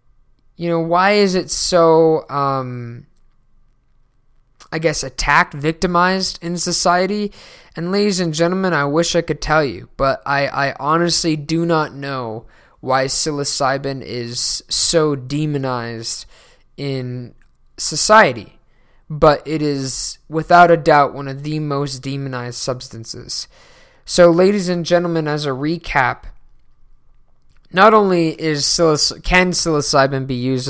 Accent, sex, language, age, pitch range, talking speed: American, male, English, 20-39, 130-165 Hz, 125 wpm